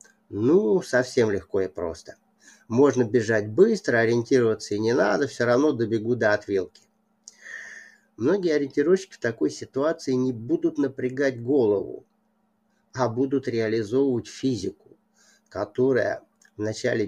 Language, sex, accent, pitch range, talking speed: Russian, male, native, 110-170 Hz, 115 wpm